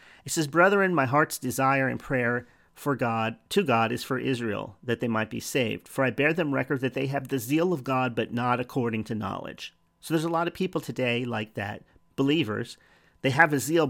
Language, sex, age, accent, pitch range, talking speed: English, male, 40-59, American, 115-145 Hz, 220 wpm